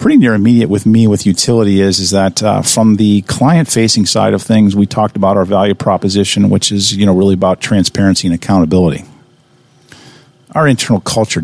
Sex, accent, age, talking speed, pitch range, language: male, American, 50-69, 190 wpm, 90-105 Hz, English